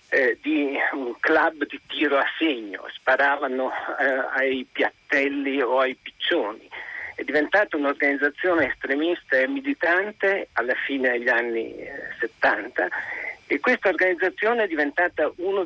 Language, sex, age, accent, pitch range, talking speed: Italian, male, 50-69, native, 140-210 Hz, 125 wpm